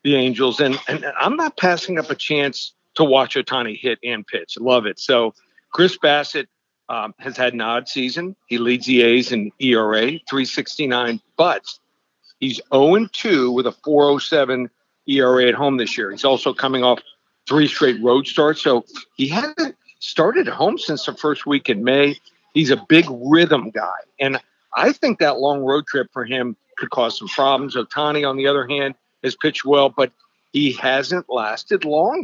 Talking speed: 180 wpm